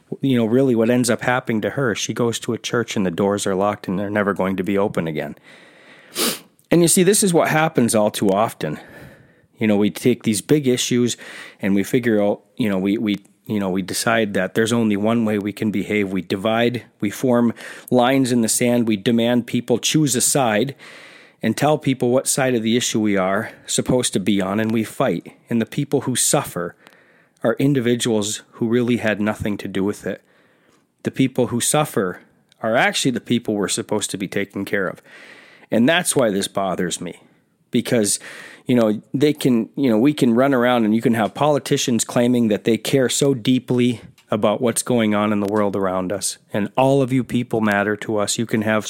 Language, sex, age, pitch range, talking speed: English, male, 40-59, 105-130 Hz, 210 wpm